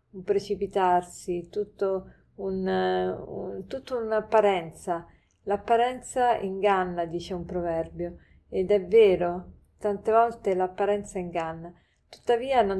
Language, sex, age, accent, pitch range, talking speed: Italian, female, 40-59, native, 180-200 Hz, 100 wpm